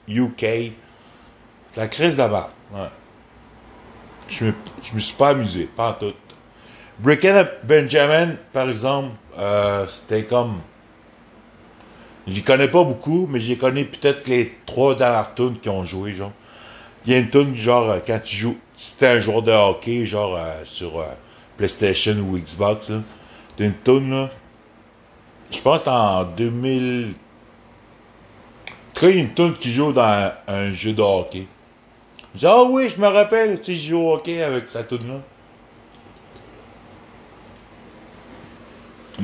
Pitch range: 105-135 Hz